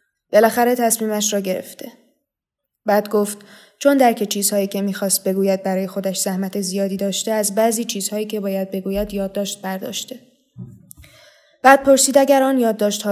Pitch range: 200-225 Hz